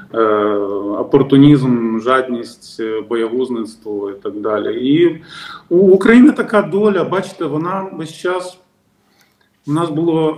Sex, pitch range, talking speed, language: male, 135-160 Hz, 105 wpm, Ukrainian